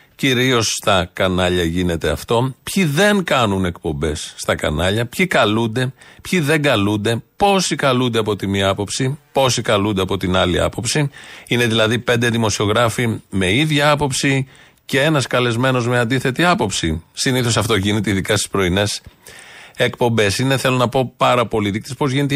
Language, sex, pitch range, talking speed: Greek, male, 105-145 Hz, 155 wpm